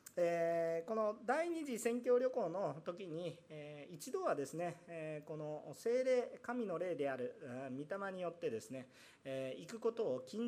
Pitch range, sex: 140-235 Hz, male